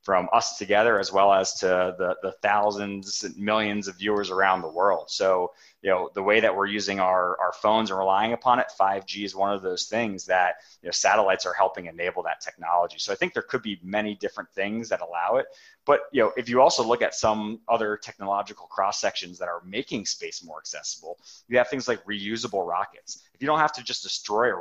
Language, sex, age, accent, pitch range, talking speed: English, male, 30-49, American, 95-110 Hz, 225 wpm